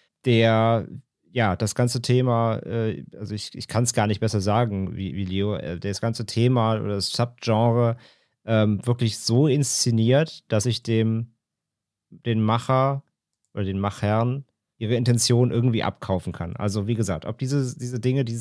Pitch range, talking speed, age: 110-125 Hz, 165 wpm, 30-49